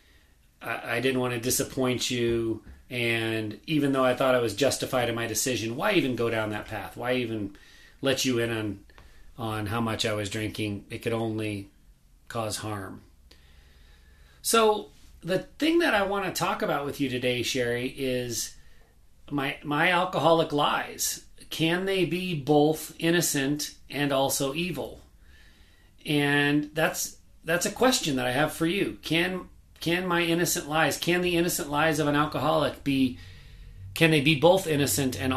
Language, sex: English, male